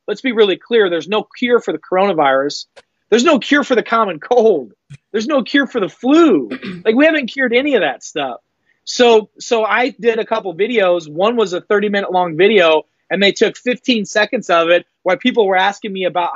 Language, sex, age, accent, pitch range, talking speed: English, male, 30-49, American, 175-215 Hz, 215 wpm